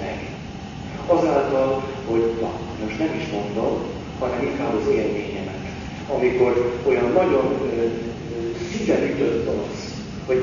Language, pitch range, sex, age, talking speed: Hungarian, 110-135 Hz, male, 40-59, 115 wpm